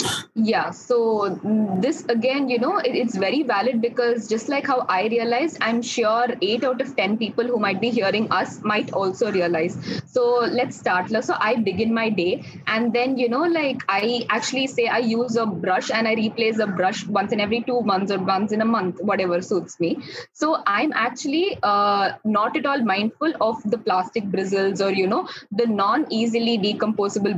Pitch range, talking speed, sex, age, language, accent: 200-250 Hz, 190 wpm, female, 20-39, English, Indian